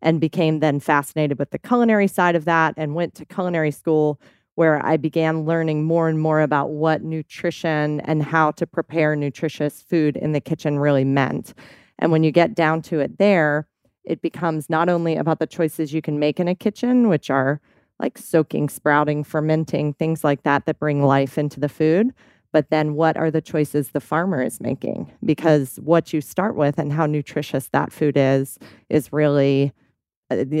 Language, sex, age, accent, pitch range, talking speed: English, female, 30-49, American, 150-180 Hz, 190 wpm